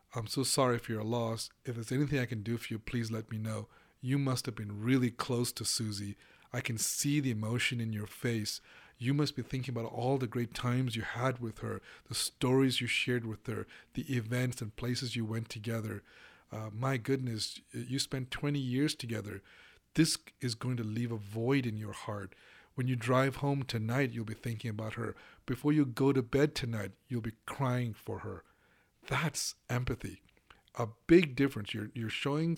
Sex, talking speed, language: male, 195 wpm, English